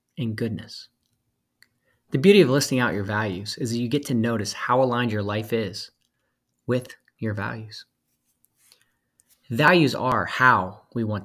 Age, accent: 30-49, American